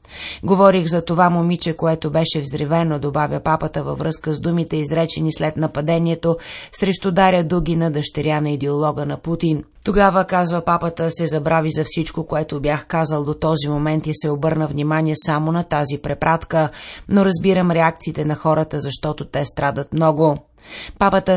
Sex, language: female, Bulgarian